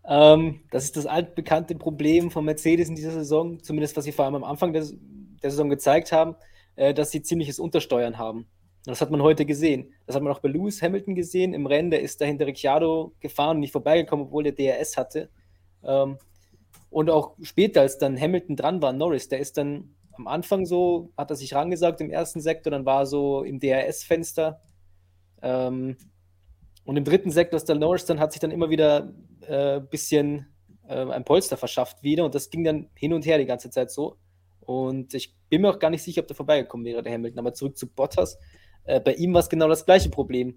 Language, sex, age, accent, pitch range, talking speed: German, male, 20-39, German, 130-160 Hz, 210 wpm